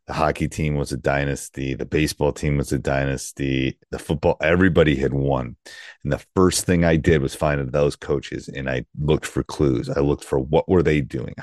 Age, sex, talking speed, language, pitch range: 30-49, male, 200 wpm, English, 70-90 Hz